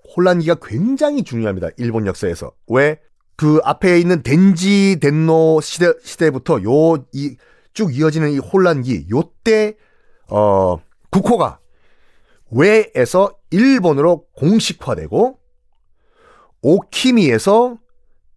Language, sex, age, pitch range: Korean, male, 30-49, 125-195 Hz